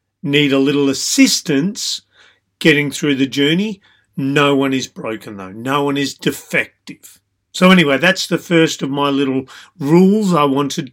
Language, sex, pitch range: English, male, 135-170 Hz